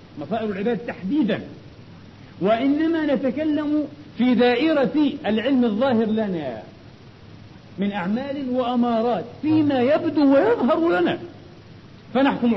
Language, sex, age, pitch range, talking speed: Arabic, male, 50-69, 185-245 Hz, 85 wpm